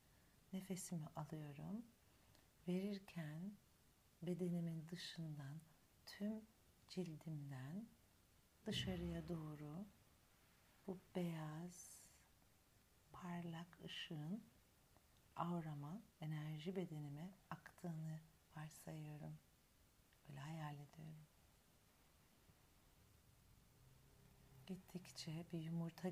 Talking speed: 55 wpm